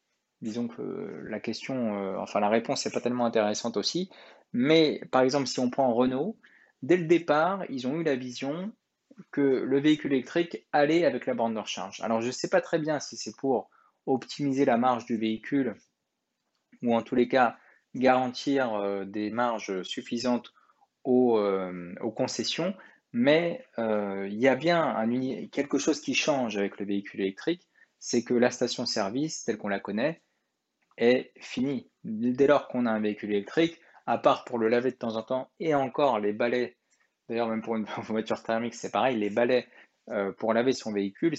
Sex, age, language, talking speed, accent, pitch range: male, 20-39, French, 185 wpm, French, 110-140 Hz